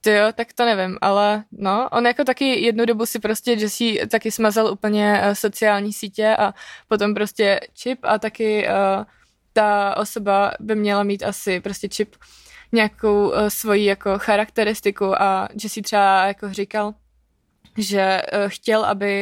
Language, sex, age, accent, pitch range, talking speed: Czech, female, 20-39, native, 195-220 Hz, 155 wpm